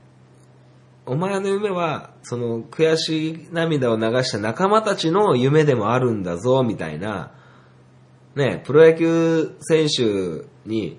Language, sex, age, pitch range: Japanese, male, 20-39, 105-165 Hz